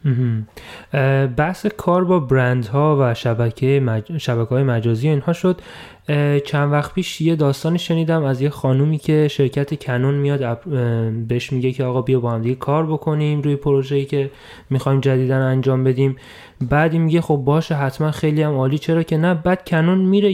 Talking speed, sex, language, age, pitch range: 170 wpm, male, Persian, 20-39, 130-160 Hz